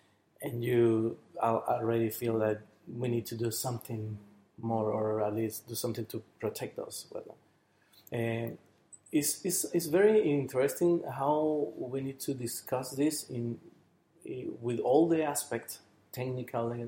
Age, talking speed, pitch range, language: 30-49, 130 wpm, 110-135 Hz, English